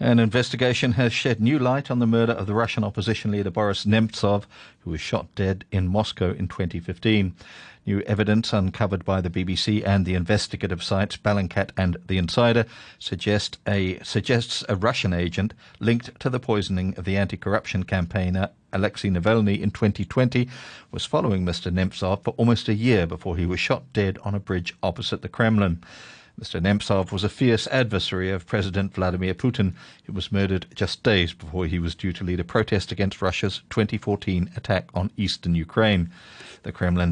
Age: 50-69